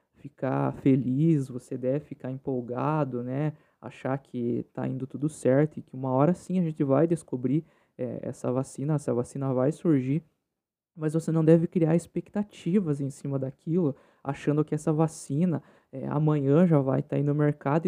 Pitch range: 145-180 Hz